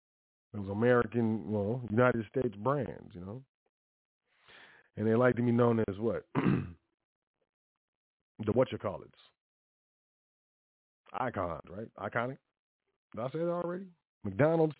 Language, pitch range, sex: English, 110-135 Hz, male